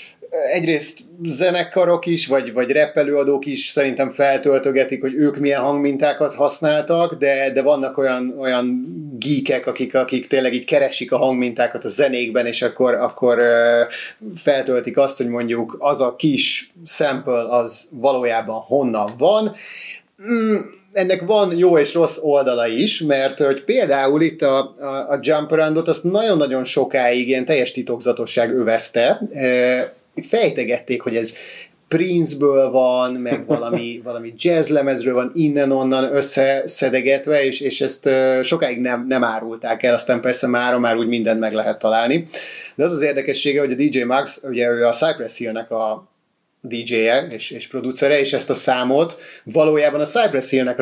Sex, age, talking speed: male, 30-49, 145 wpm